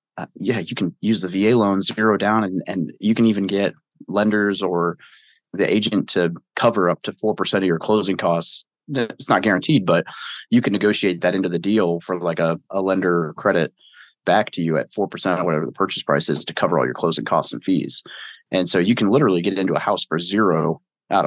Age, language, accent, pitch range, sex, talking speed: 30-49, English, American, 95-115 Hz, male, 215 wpm